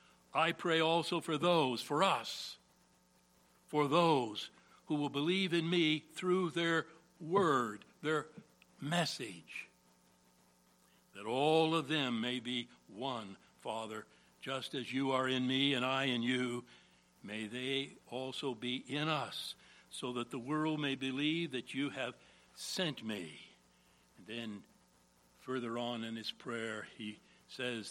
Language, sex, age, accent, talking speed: English, male, 60-79, American, 135 wpm